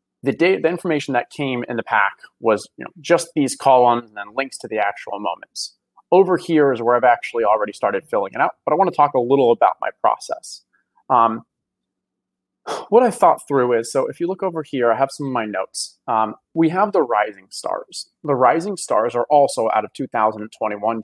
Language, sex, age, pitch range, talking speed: English, male, 30-49, 115-160 Hz, 215 wpm